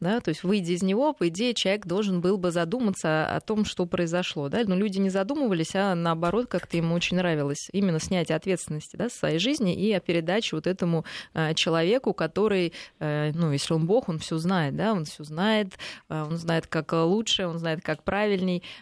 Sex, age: female, 20-39